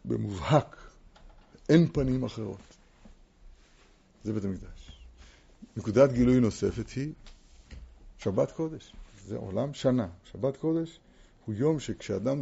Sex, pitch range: male, 95-135 Hz